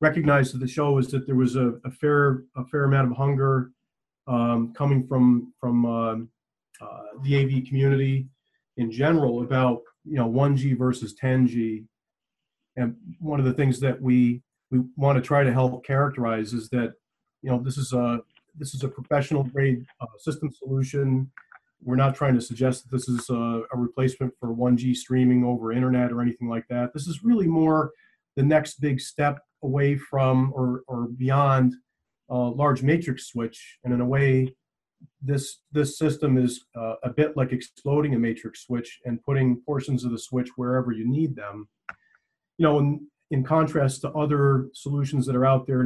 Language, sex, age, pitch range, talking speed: English, male, 40-59, 125-140 Hz, 180 wpm